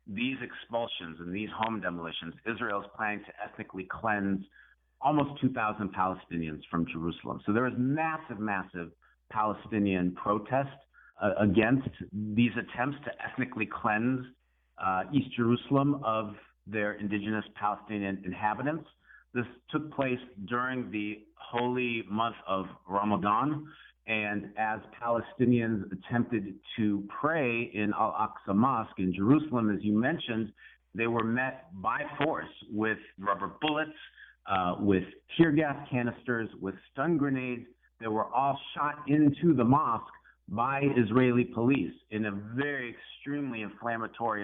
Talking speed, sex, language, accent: 125 wpm, male, English, American